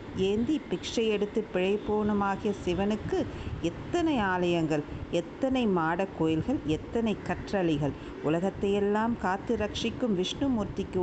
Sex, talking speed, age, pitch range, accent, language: female, 85 wpm, 50-69, 175-225 Hz, native, Tamil